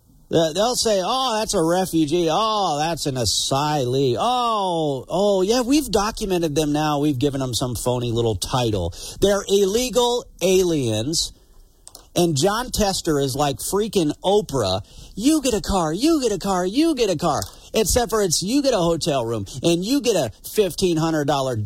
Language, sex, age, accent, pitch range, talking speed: English, male, 50-69, American, 125-185 Hz, 165 wpm